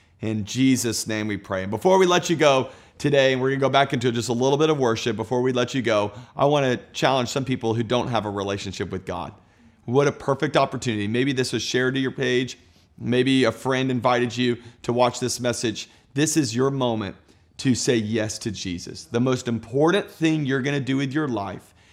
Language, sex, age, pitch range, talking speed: English, male, 40-59, 110-140 Hz, 220 wpm